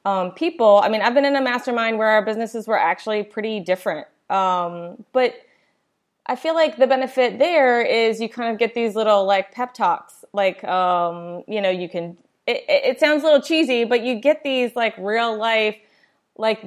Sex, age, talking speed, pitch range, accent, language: female, 20-39, 195 wpm, 195-250 Hz, American, English